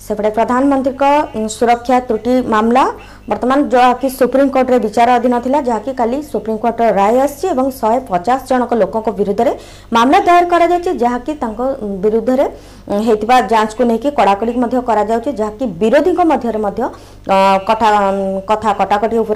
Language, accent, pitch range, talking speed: Hindi, native, 215-285 Hz, 35 wpm